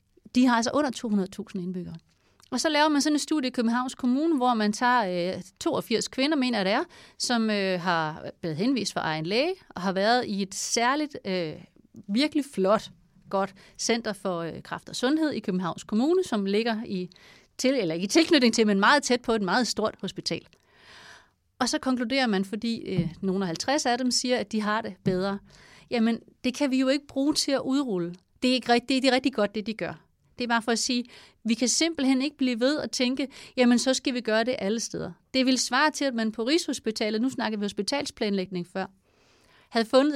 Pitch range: 195-255 Hz